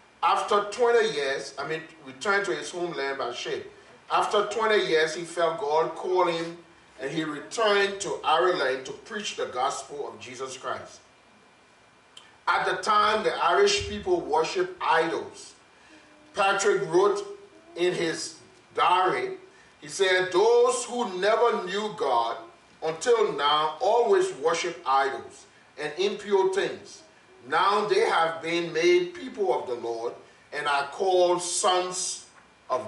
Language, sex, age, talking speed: English, male, 40-59, 135 wpm